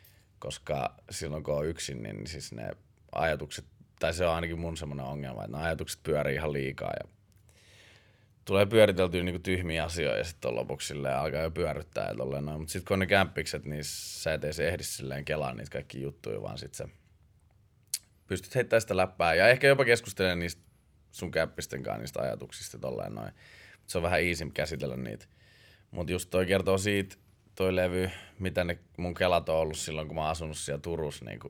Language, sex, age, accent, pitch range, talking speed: Finnish, male, 20-39, native, 80-100 Hz, 185 wpm